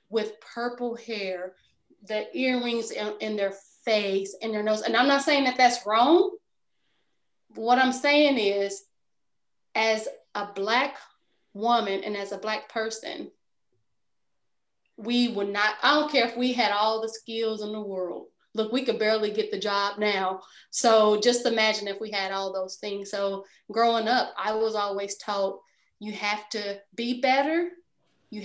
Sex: female